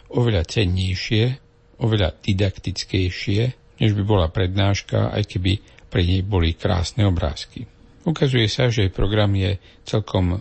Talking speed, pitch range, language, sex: 120 wpm, 95-115 Hz, Slovak, male